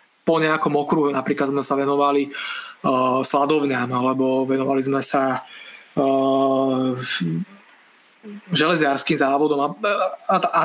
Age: 20-39